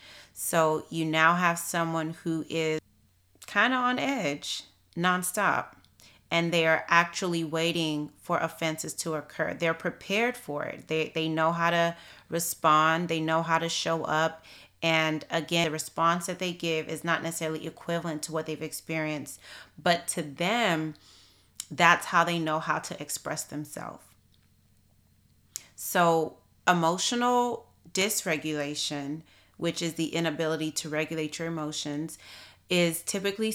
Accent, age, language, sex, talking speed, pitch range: American, 30-49, English, female, 135 wpm, 150-170 Hz